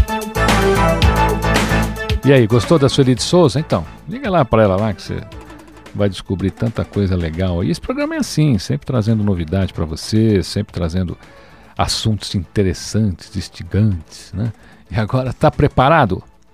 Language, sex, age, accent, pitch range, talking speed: Portuguese, male, 50-69, Brazilian, 95-130 Hz, 145 wpm